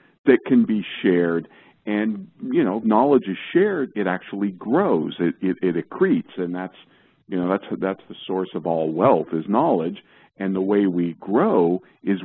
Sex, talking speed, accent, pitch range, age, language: male, 175 wpm, American, 85-105 Hz, 50-69, English